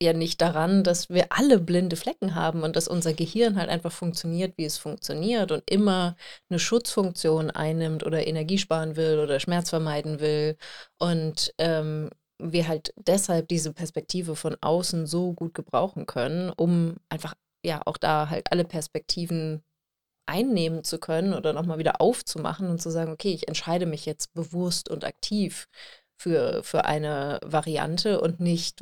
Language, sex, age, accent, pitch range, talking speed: German, female, 30-49, German, 160-190 Hz, 160 wpm